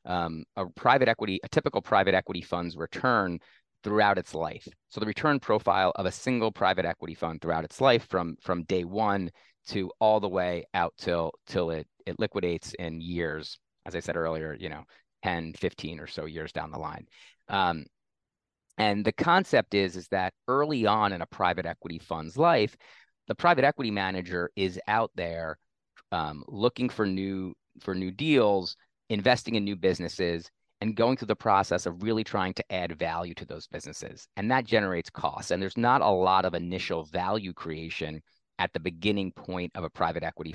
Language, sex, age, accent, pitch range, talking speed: English, male, 30-49, American, 85-100 Hz, 185 wpm